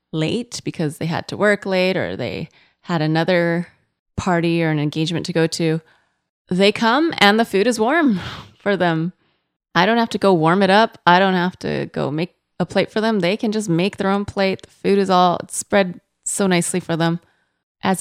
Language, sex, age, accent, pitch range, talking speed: English, female, 20-39, American, 165-205 Hz, 205 wpm